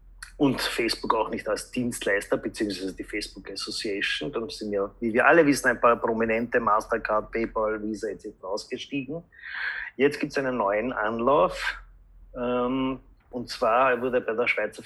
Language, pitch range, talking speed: German, 110-135 Hz, 145 wpm